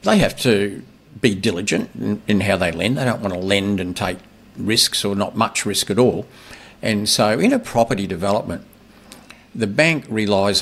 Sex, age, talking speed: male, 50-69, 180 wpm